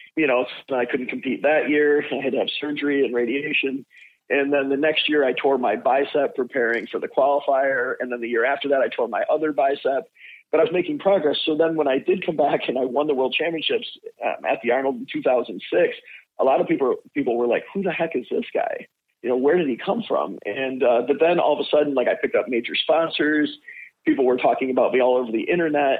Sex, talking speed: male, 240 wpm